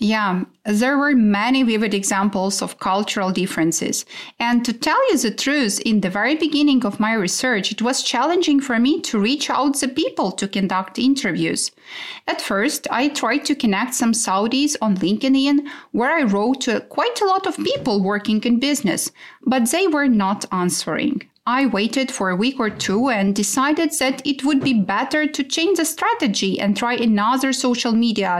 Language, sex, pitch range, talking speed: English, female, 210-285 Hz, 180 wpm